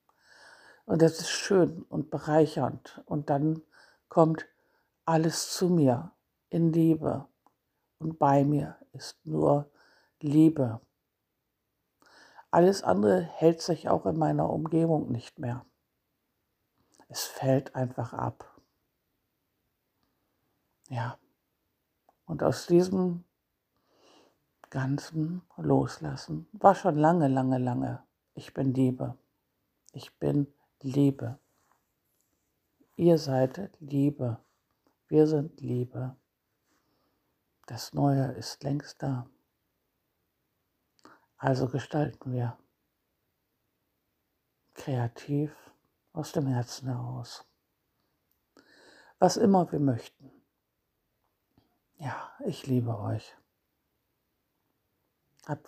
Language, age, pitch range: German, 60-79, 130-160 Hz